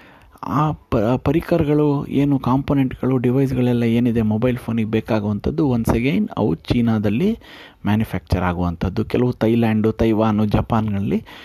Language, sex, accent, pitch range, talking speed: Kannada, male, native, 105-140 Hz, 100 wpm